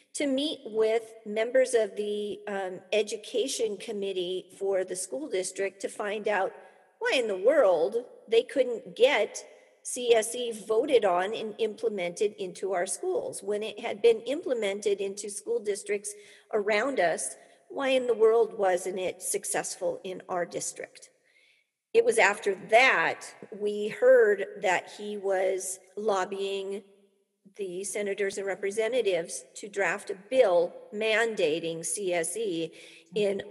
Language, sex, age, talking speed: English, female, 50-69, 130 wpm